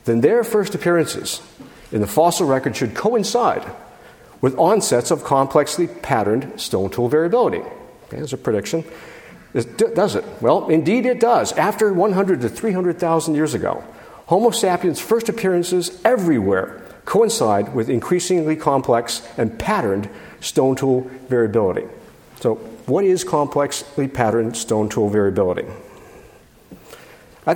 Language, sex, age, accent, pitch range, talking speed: English, male, 50-69, American, 110-170 Hz, 130 wpm